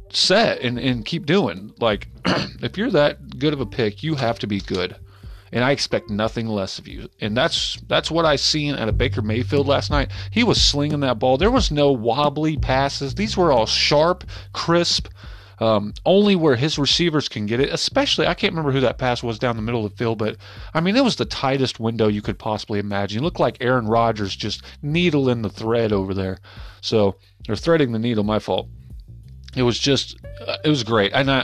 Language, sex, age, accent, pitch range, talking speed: English, male, 30-49, American, 105-135 Hz, 210 wpm